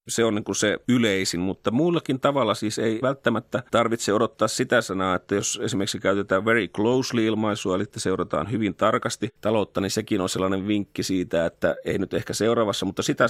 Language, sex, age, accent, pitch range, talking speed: Finnish, male, 30-49, native, 95-115 Hz, 185 wpm